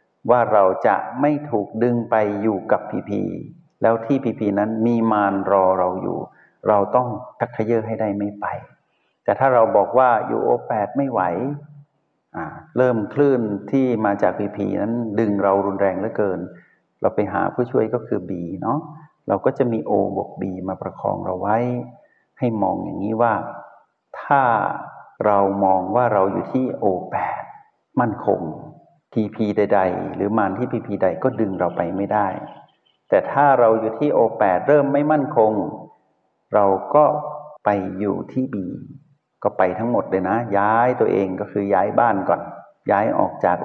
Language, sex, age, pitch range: Thai, male, 60-79, 100-135 Hz